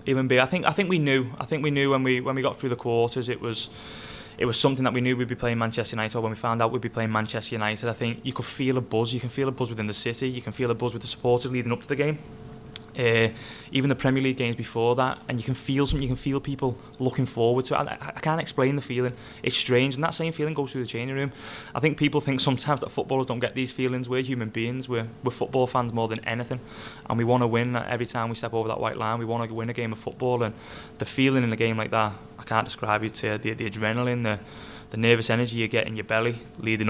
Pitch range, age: 110-130 Hz, 20-39